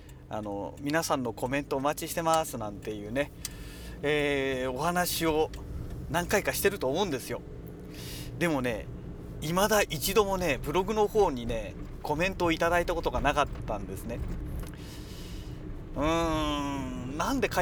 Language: Japanese